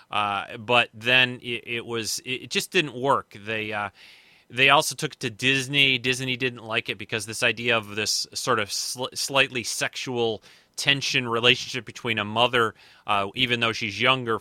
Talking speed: 175 wpm